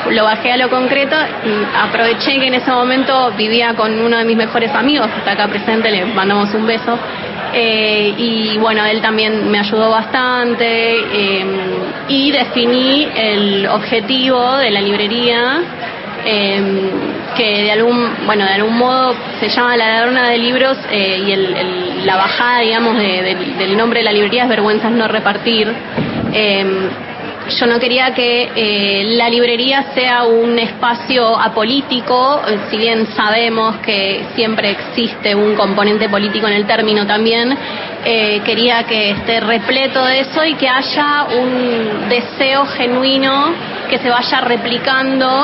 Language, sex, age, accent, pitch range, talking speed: Spanish, female, 20-39, Argentinian, 215-255 Hz, 155 wpm